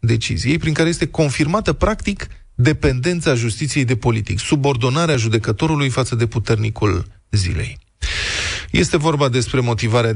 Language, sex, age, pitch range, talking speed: Romanian, male, 20-39, 110-150 Hz, 120 wpm